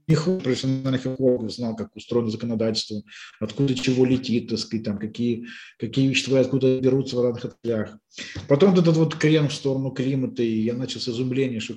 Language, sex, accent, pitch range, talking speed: Russian, male, native, 120-160 Hz, 170 wpm